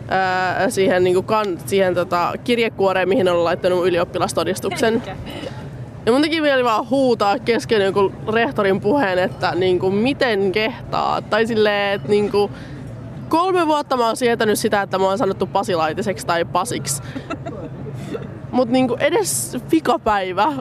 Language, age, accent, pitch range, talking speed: Finnish, 20-39, native, 175-225 Hz, 145 wpm